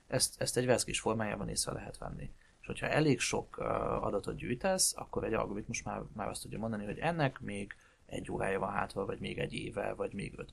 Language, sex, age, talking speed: Hungarian, male, 30-49, 210 wpm